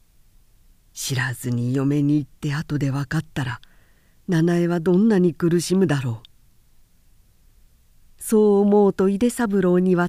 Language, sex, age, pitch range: Japanese, female, 50-69, 135-210 Hz